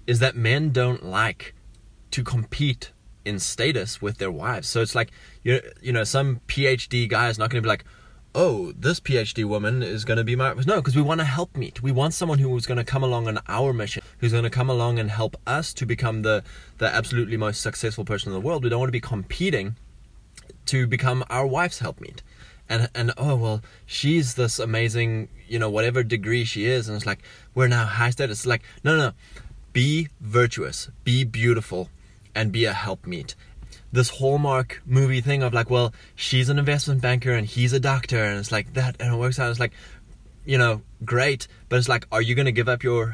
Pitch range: 110-130 Hz